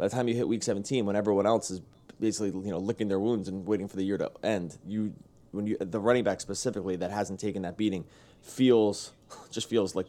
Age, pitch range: 20-39, 95-110 Hz